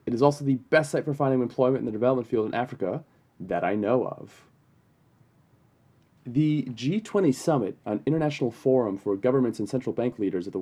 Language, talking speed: English, 185 wpm